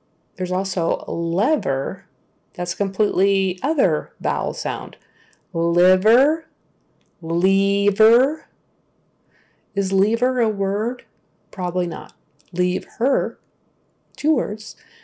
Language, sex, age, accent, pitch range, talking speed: English, female, 30-49, American, 170-220 Hz, 85 wpm